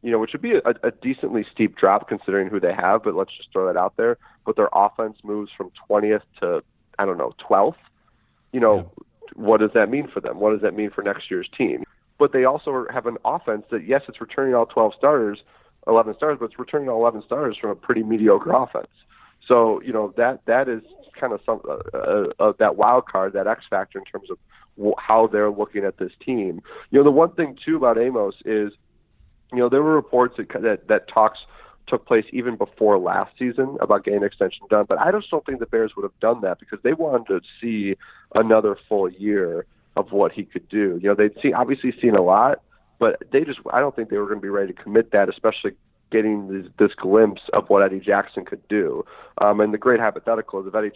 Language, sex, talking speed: English, male, 230 wpm